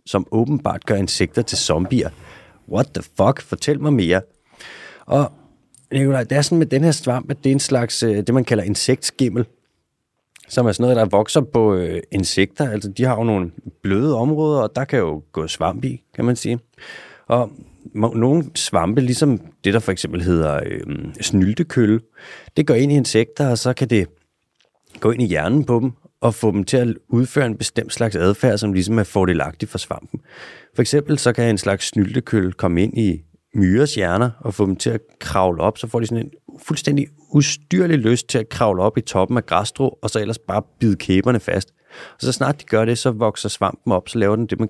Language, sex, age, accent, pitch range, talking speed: Danish, male, 30-49, native, 95-130 Hz, 205 wpm